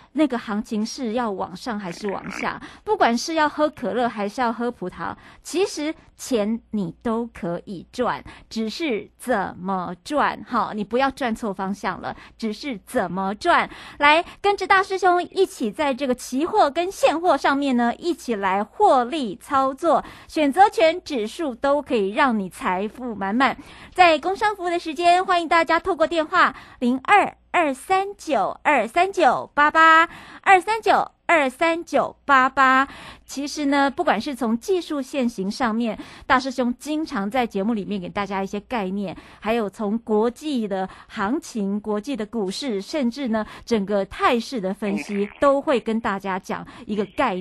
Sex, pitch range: female, 210-310 Hz